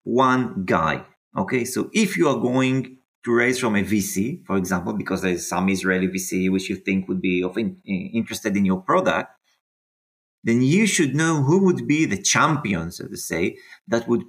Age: 30-49